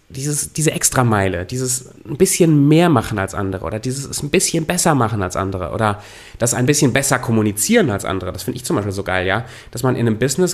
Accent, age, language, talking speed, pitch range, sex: German, 30-49, German, 215 wpm, 110-150 Hz, male